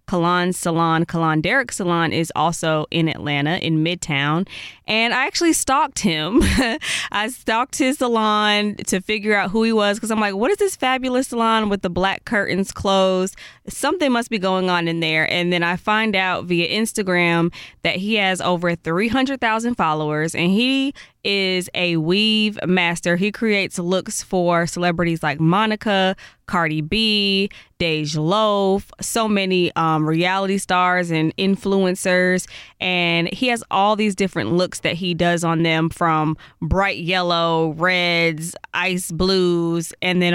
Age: 20-39